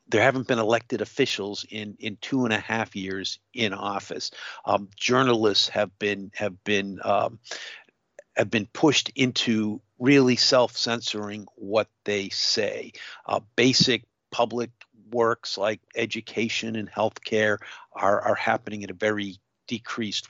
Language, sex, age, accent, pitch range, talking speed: English, male, 50-69, American, 105-120 Hz, 135 wpm